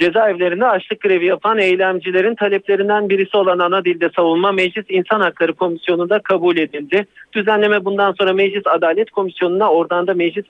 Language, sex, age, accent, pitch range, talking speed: Turkish, male, 50-69, native, 175-230 Hz, 150 wpm